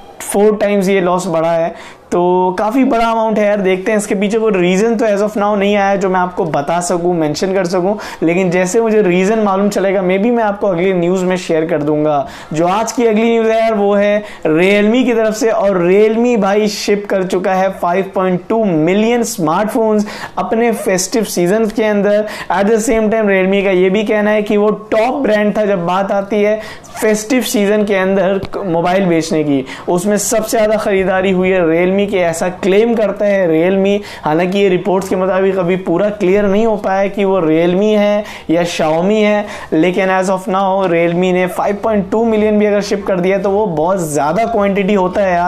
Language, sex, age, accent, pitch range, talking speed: Hindi, male, 20-39, native, 180-215 Hz, 155 wpm